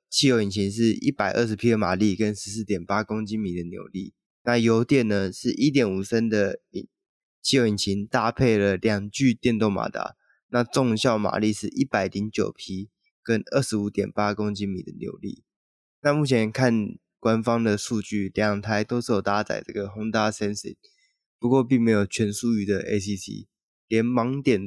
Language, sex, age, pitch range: Chinese, male, 20-39, 100-120 Hz